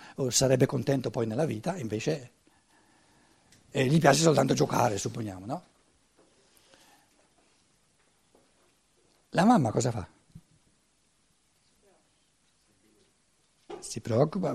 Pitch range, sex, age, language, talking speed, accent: 130-205 Hz, male, 60-79, Italian, 85 wpm, native